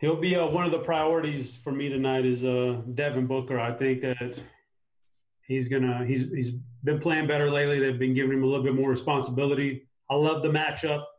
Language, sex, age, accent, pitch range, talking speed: English, male, 30-49, American, 125-145 Hz, 210 wpm